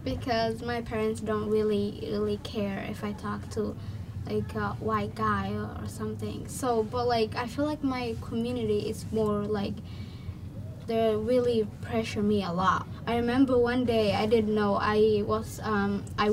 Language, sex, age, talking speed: English, female, 10-29, 165 wpm